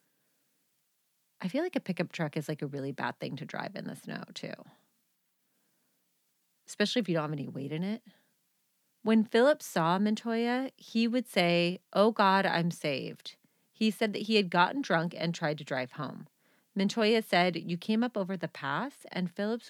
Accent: American